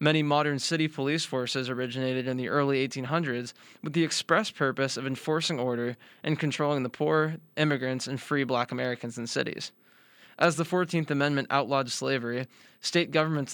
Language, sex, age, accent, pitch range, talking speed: English, male, 20-39, American, 125-155 Hz, 160 wpm